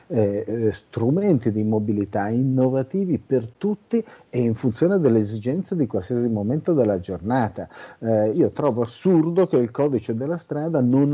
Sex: male